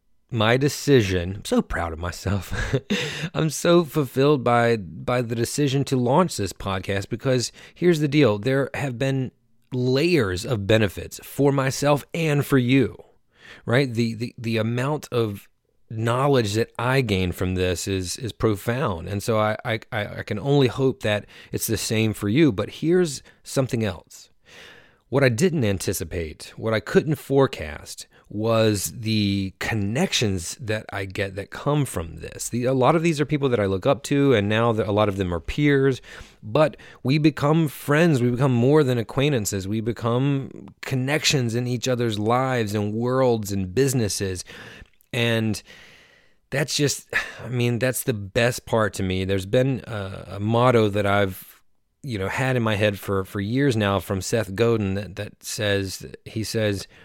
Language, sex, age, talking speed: English, male, 30-49, 170 wpm